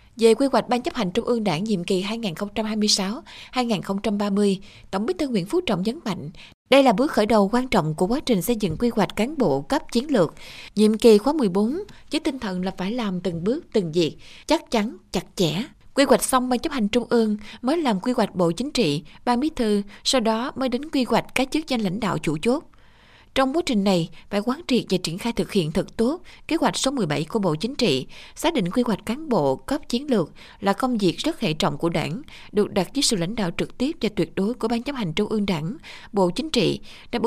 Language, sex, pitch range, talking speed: Vietnamese, female, 190-245 Hz, 240 wpm